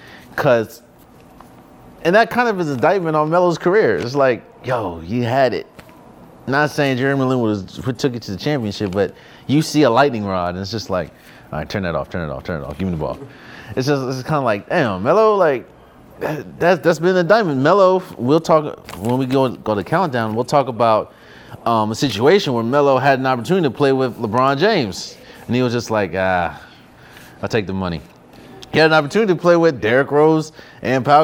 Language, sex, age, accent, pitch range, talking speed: English, male, 30-49, American, 110-150 Hz, 215 wpm